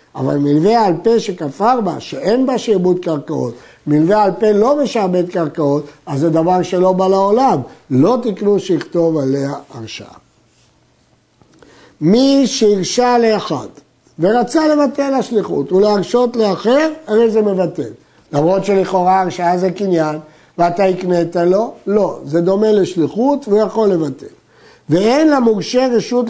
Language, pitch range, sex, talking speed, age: Hebrew, 160-215 Hz, male, 130 wpm, 60-79